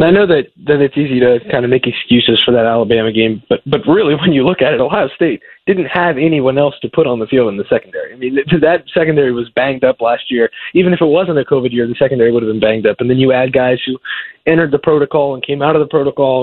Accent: American